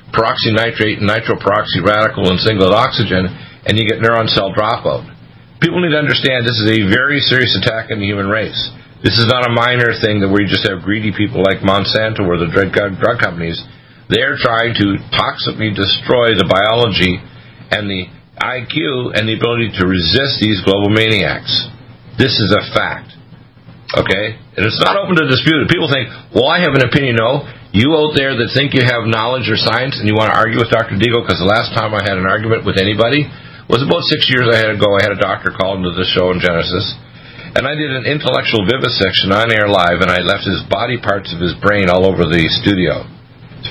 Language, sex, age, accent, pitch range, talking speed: English, male, 50-69, American, 100-125 Hz, 210 wpm